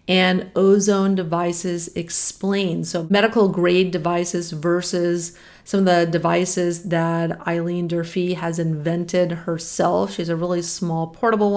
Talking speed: 125 wpm